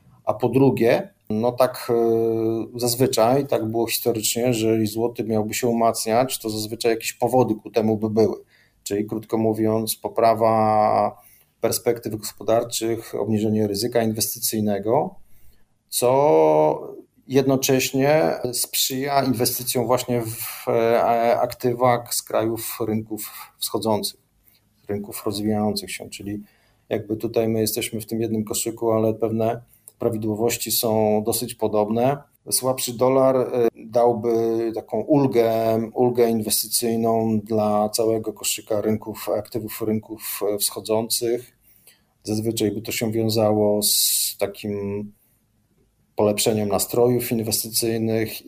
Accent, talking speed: native, 105 wpm